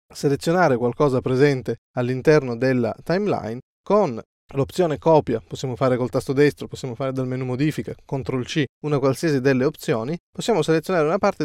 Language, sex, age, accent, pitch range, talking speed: Italian, male, 20-39, native, 125-165 Hz, 150 wpm